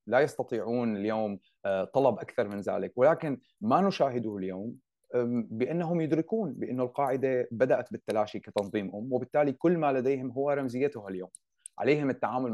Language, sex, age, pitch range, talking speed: Arabic, male, 30-49, 105-135 Hz, 135 wpm